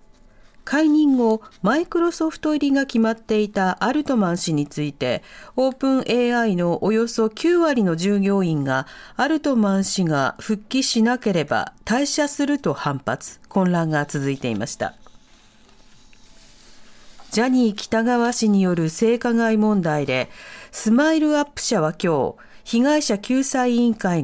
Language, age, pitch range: Japanese, 40-59, 180-265 Hz